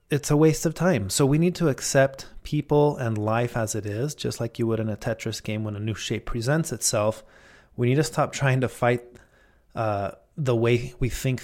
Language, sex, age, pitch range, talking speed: English, male, 30-49, 110-135 Hz, 220 wpm